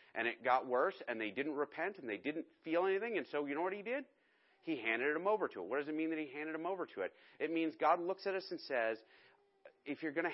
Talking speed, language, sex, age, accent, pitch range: 285 wpm, English, male, 30-49, American, 120-165 Hz